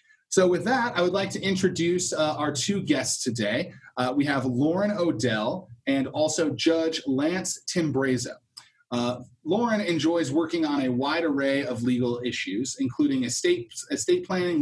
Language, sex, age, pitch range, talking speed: English, male, 30-49, 135-220 Hz, 150 wpm